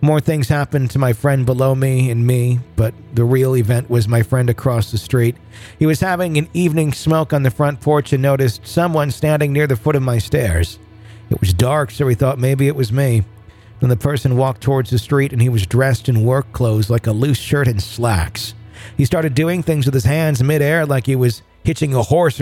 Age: 40-59